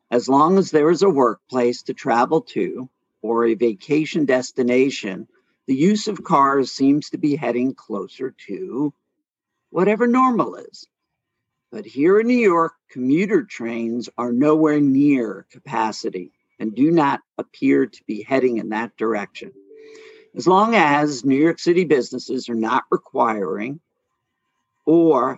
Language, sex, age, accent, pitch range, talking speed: English, male, 50-69, American, 120-180 Hz, 140 wpm